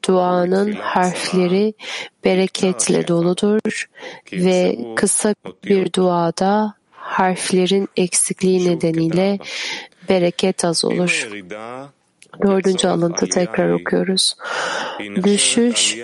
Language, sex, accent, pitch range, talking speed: Turkish, female, native, 180-200 Hz, 70 wpm